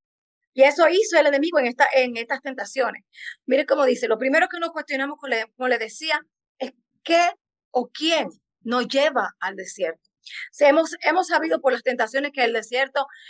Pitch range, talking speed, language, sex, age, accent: 235-290 Hz, 165 wpm, English, female, 30-49, American